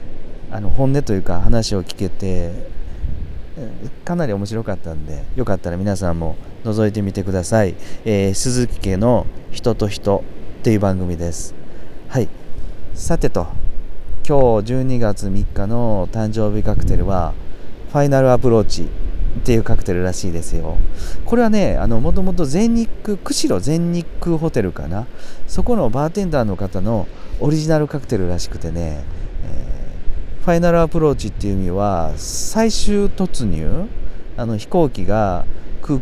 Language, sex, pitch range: Japanese, male, 90-125 Hz